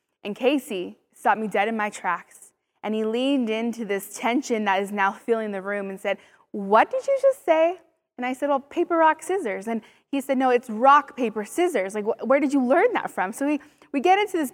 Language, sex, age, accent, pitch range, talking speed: English, female, 20-39, American, 220-285 Hz, 225 wpm